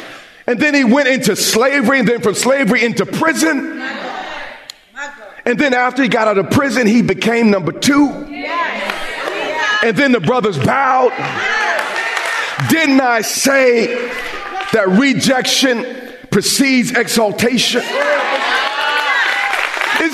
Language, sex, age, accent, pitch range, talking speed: English, male, 40-59, American, 205-270 Hz, 110 wpm